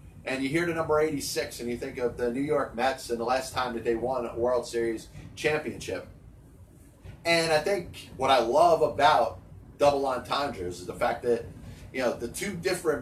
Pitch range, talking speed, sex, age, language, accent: 125-155 Hz, 200 wpm, male, 30-49, English, American